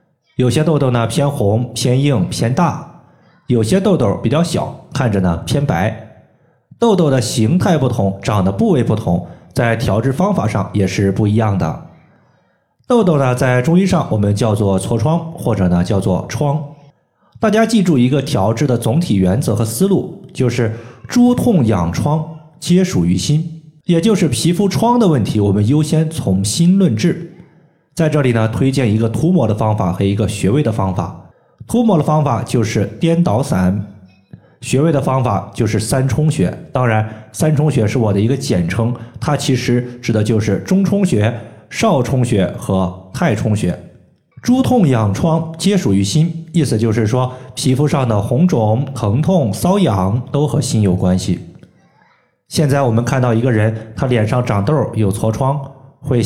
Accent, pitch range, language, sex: native, 110-155 Hz, Chinese, male